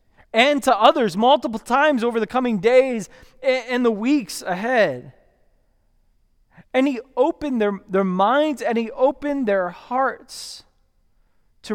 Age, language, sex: 20-39, English, male